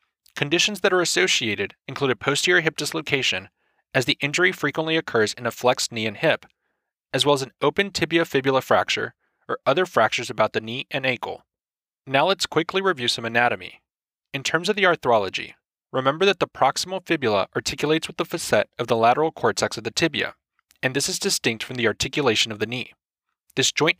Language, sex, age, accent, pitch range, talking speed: English, male, 20-39, American, 125-170 Hz, 190 wpm